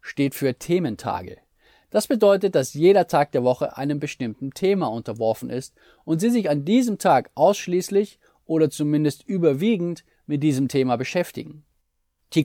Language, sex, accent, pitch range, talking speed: German, male, German, 130-180 Hz, 145 wpm